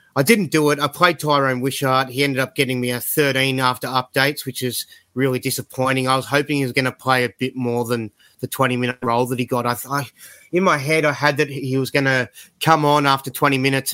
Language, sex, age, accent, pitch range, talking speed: English, male, 30-49, Australian, 125-140 Hz, 235 wpm